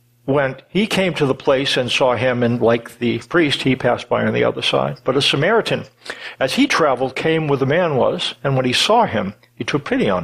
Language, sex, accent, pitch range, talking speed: English, male, American, 120-150 Hz, 235 wpm